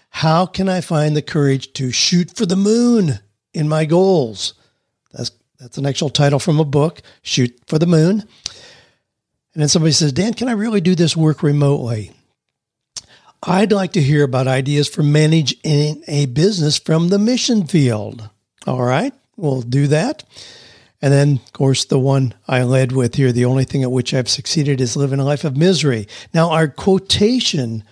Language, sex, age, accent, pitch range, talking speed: English, male, 60-79, American, 135-180 Hz, 180 wpm